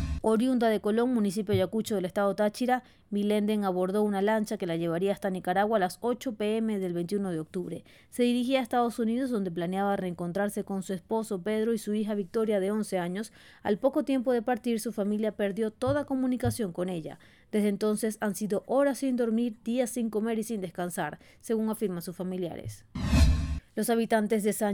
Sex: female